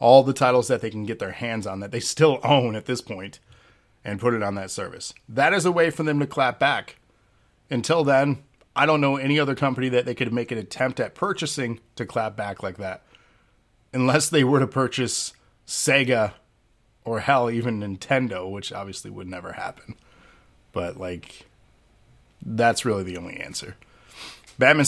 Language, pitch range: English, 110-140 Hz